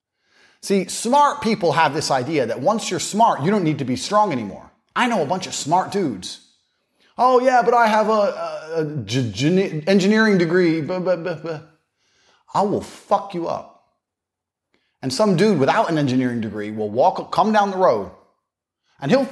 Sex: male